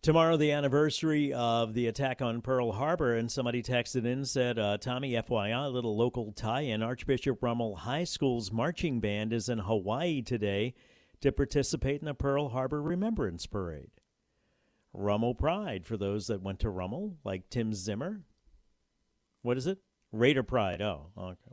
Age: 50-69